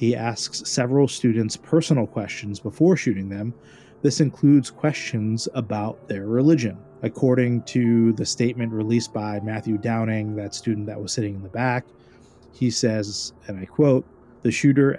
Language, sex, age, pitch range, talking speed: English, male, 30-49, 105-125 Hz, 150 wpm